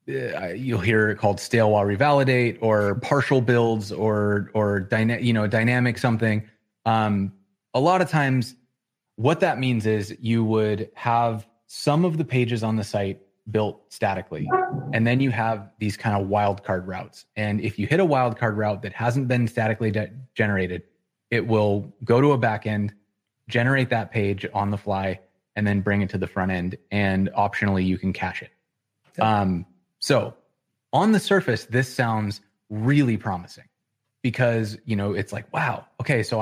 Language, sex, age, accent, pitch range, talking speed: English, male, 20-39, American, 105-125 Hz, 170 wpm